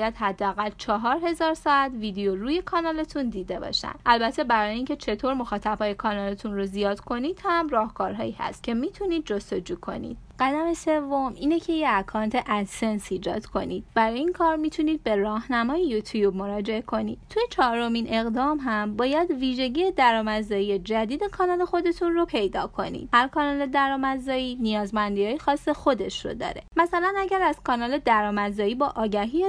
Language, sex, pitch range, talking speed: Persian, female, 215-310 Hz, 145 wpm